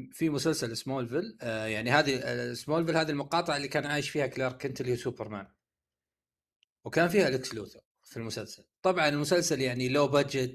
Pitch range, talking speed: 120-150 Hz, 155 wpm